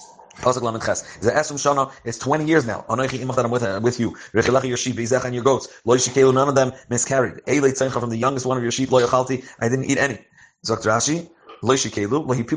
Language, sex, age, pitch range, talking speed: English, male, 30-49, 105-130 Hz, 125 wpm